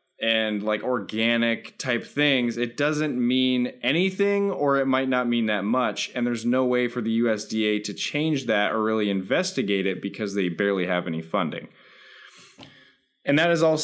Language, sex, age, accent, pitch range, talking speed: English, male, 20-39, American, 110-155 Hz, 175 wpm